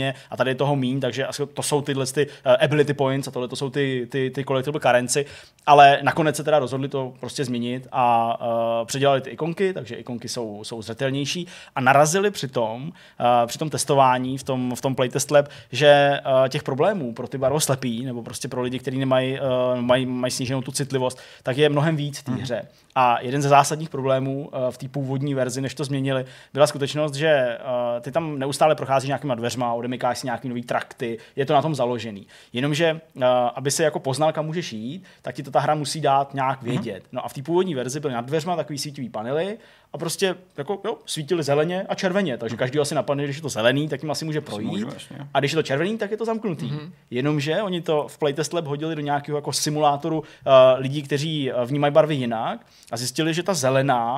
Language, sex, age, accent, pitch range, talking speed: Czech, male, 20-39, native, 130-150 Hz, 210 wpm